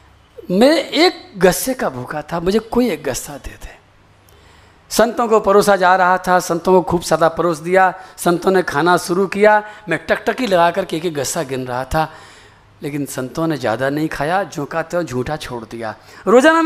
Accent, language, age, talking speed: native, Hindi, 50-69, 185 wpm